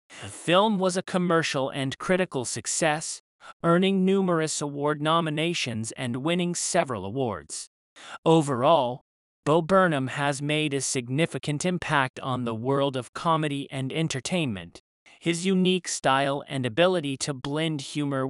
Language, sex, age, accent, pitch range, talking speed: English, male, 40-59, American, 130-165 Hz, 130 wpm